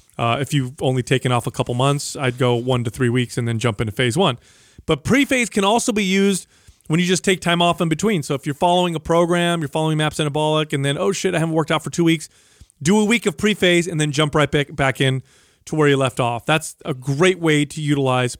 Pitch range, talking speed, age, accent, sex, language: 140-175 Hz, 255 wpm, 30-49, American, male, English